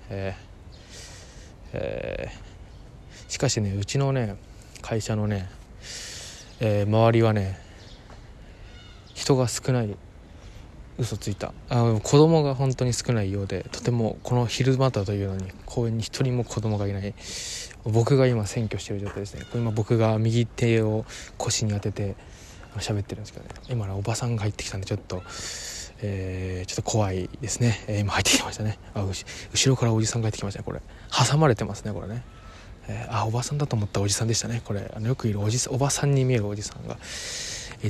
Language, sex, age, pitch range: Japanese, male, 20-39, 100-120 Hz